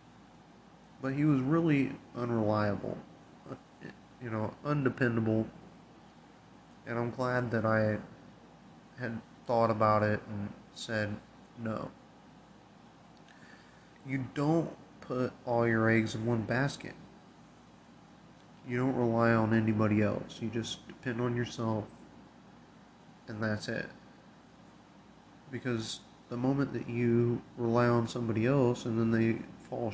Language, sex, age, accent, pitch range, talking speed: English, male, 30-49, American, 110-125 Hz, 110 wpm